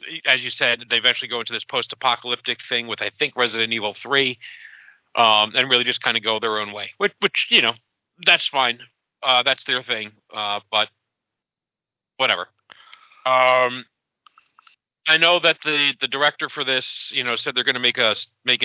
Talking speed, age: 185 wpm, 40-59